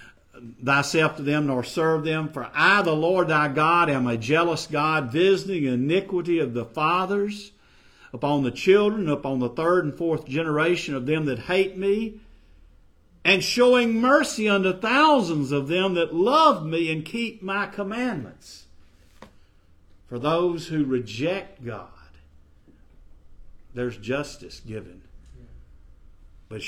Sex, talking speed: male, 130 wpm